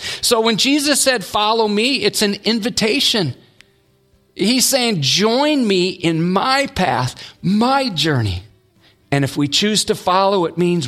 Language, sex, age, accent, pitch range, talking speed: English, male, 40-59, American, 120-190 Hz, 145 wpm